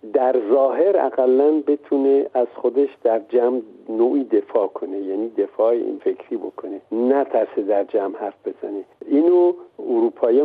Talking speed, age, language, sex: 130 wpm, 50-69, Persian, male